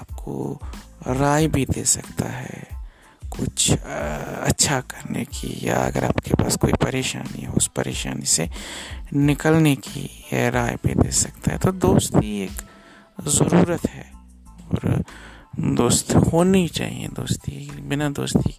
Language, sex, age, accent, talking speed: Hindi, male, 50-69, native, 130 wpm